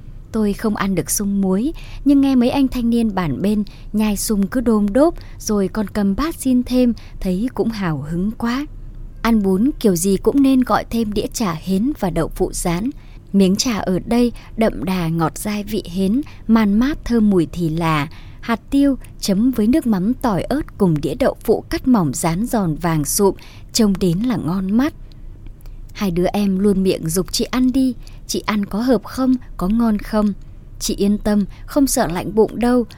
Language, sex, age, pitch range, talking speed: Vietnamese, male, 20-39, 180-240 Hz, 200 wpm